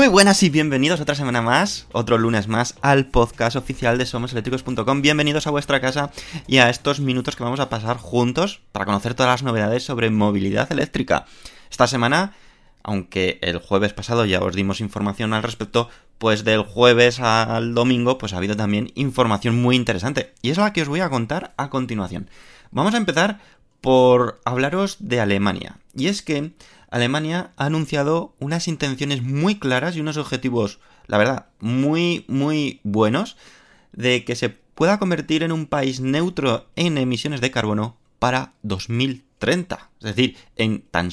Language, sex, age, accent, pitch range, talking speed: Spanish, male, 20-39, Spanish, 110-145 Hz, 165 wpm